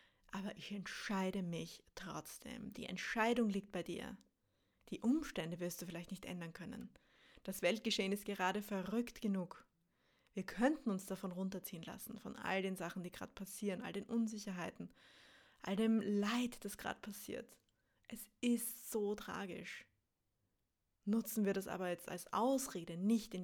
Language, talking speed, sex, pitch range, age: English, 150 wpm, female, 190-230 Hz, 20-39